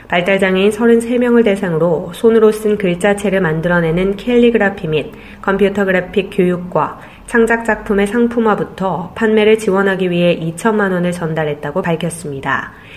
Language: Korean